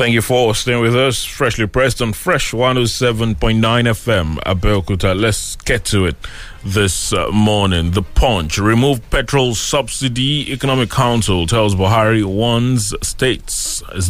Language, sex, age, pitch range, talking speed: English, male, 30-49, 100-120 Hz, 130 wpm